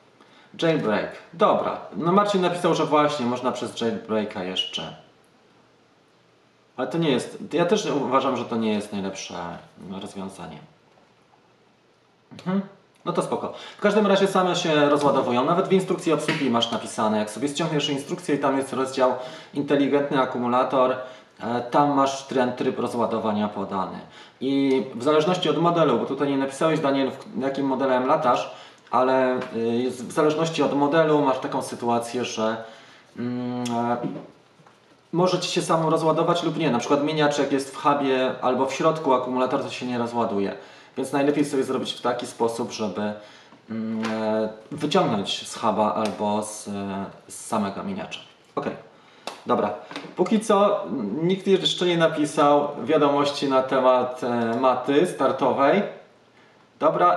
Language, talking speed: Polish, 135 wpm